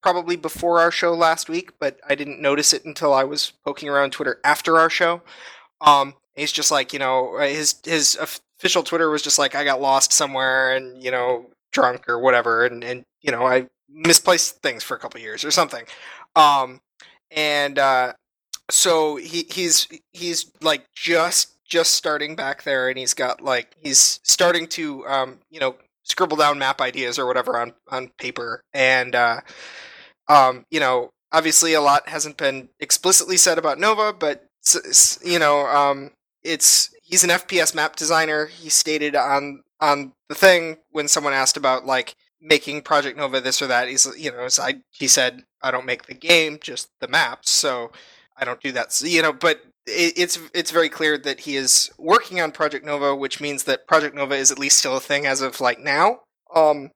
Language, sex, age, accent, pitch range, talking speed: English, male, 20-39, American, 135-165 Hz, 190 wpm